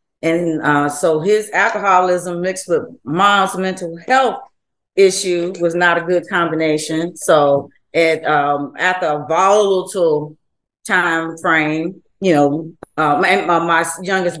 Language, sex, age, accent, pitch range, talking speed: English, female, 30-49, American, 155-195 Hz, 125 wpm